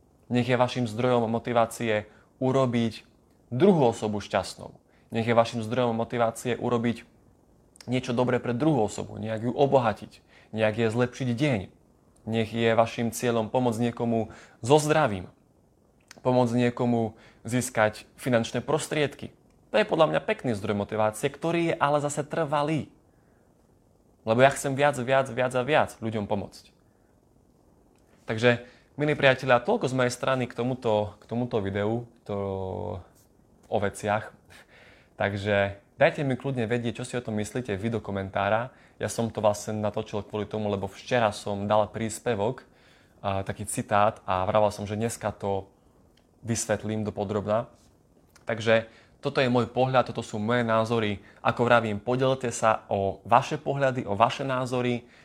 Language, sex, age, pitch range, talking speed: Slovak, male, 20-39, 105-125 Hz, 145 wpm